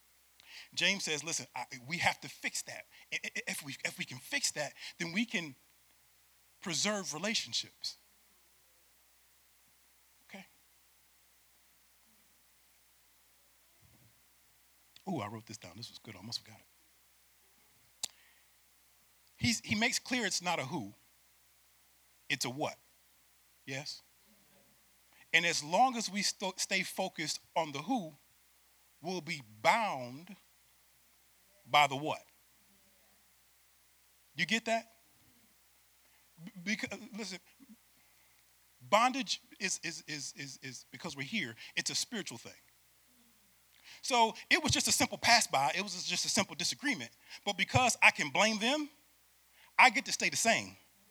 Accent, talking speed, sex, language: American, 125 wpm, male, English